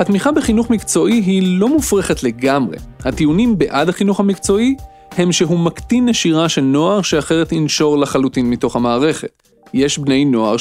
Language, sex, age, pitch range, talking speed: Hebrew, male, 30-49, 140-190 Hz, 140 wpm